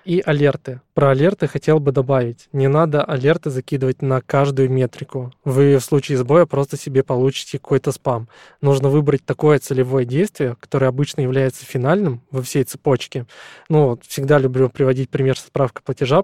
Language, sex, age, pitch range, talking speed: Russian, male, 20-39, 130-150 Hz, 155 wpm